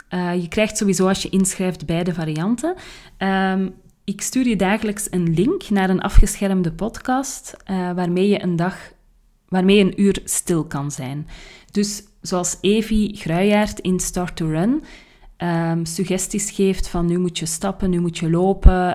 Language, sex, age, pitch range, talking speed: Dutch, female, 30-49, 165-200 Hz, 160 wpm